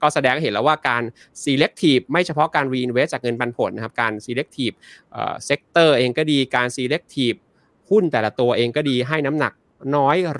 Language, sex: Thai, male